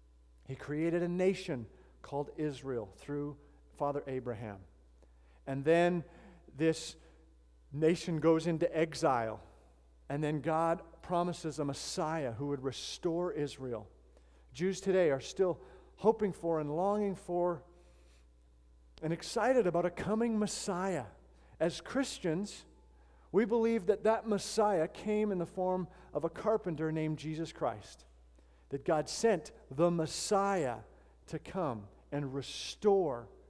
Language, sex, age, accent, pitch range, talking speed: English, male, 50-69, American, 105-175 Hz, 120 wpm